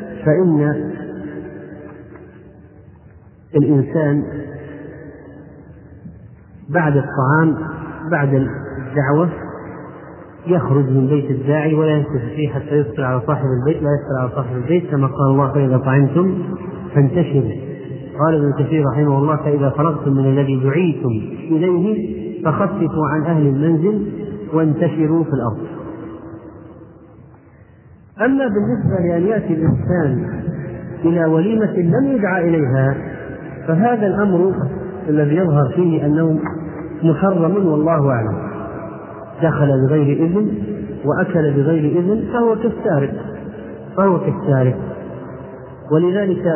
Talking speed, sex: 100 wpm, male